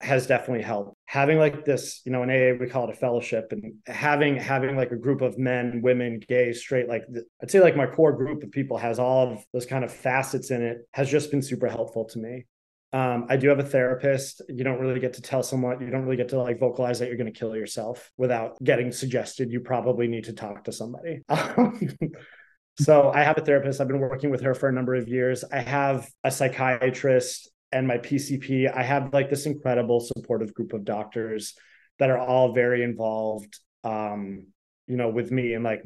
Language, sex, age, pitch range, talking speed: English, male, 20-39, 120-135 Hz, 220 wpm